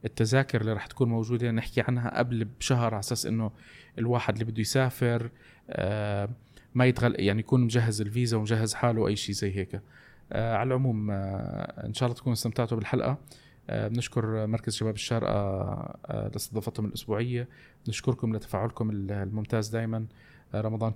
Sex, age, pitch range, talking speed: male, 20-39, 110-125 Hz, 130 wpm